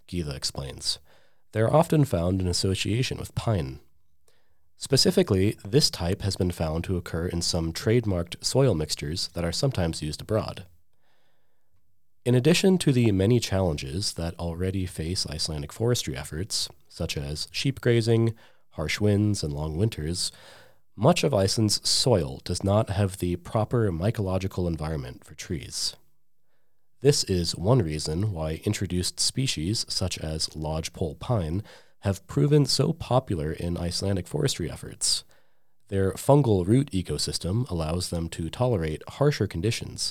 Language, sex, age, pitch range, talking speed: English, male, 30-49, 85-115 Hz, 135 wpm